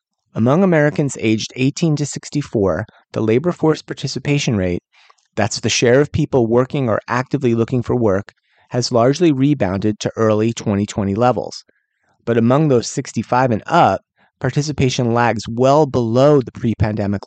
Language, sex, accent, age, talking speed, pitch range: English, male, American, 30-49, 145 wpm, 110-140 Hz